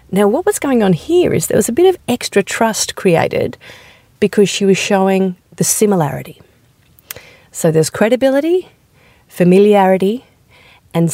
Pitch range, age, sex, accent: 160-220 Hz, 40-59, female, Australian